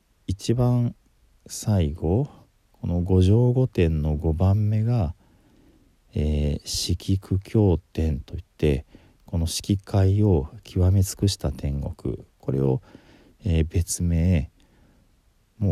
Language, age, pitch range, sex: Japanese, 50-69, 65-90 Hz, male